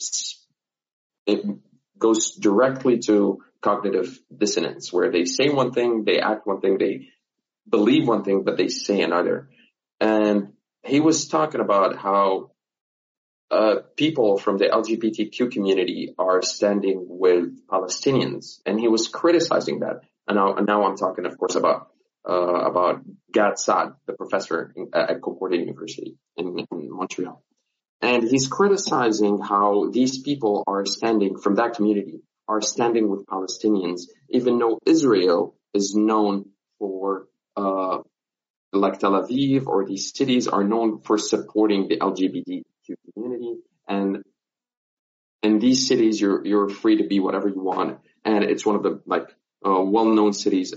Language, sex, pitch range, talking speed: English, male, 100-120 Hz, 145 wpm